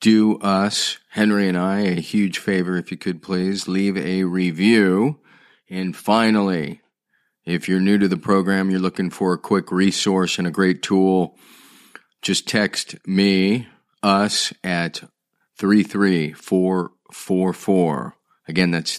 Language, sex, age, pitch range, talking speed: English, male, 40-59, 95-110 Hz, 130 wpm